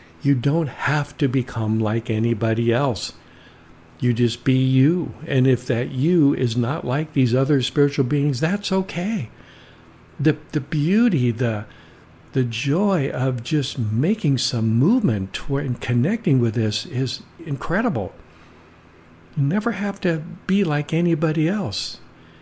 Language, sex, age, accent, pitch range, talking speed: English, male, 60-79, American, 115-155 Hz, 135 wpm